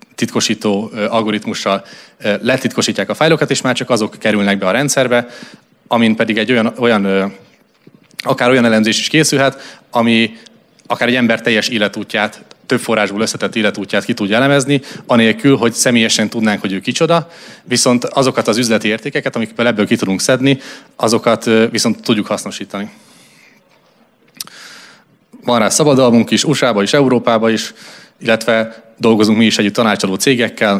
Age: 30-49